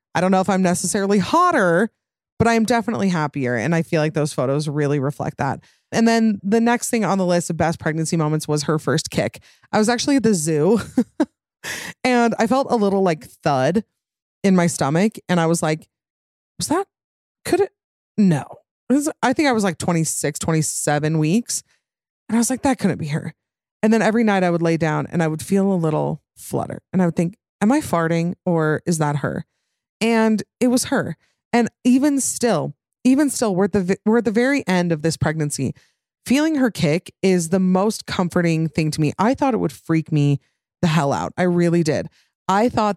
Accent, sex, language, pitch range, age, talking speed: American, female, English, 160-235 Hz, 20-39, 205 wpm